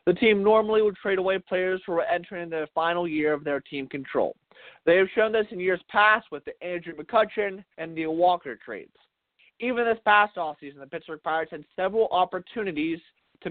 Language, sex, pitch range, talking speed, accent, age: English, male, 155-210 Hz, 190 wpm, American, 20-39